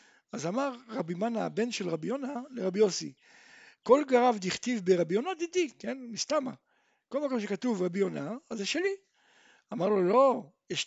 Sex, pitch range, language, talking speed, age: male, 205-330 Hz, Hebrew, 160 wpm, 60-79